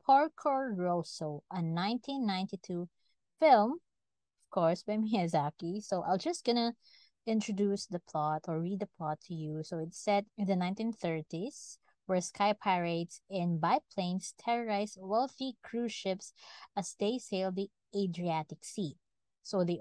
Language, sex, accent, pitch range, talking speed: English, female, Filipino, 170-230 Hz, 135 wpm